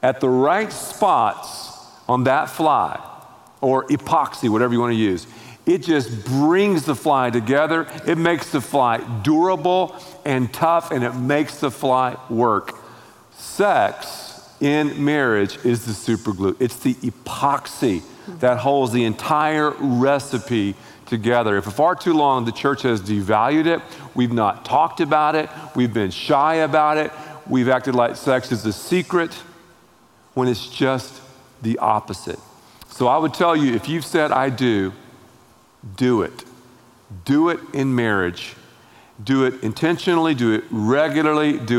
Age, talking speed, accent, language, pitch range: 50-69, 150 wpm, American, English, 120-150 Hz